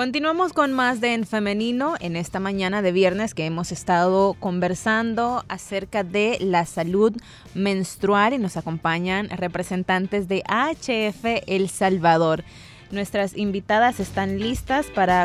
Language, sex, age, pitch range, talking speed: Spanish, female, 20-39, 185-235 Hz, 130 wpm